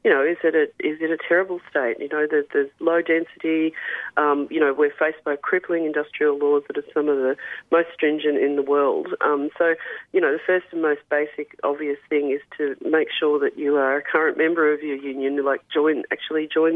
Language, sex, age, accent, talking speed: English, female, 40-59, Australian, 225 wpm